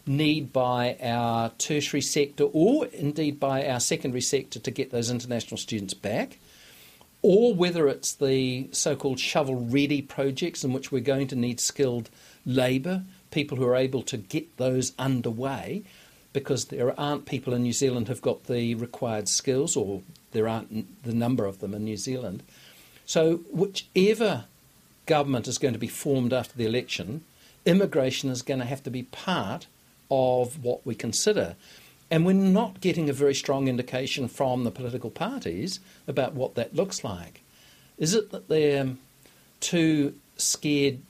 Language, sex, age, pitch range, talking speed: English, male, 50-69, 120-145 Hz, 160 wpm